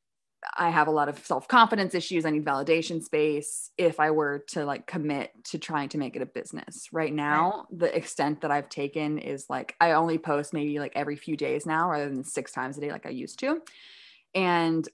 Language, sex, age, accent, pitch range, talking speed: English, female, 20-39, American, 150-185 Hz, 215 wpm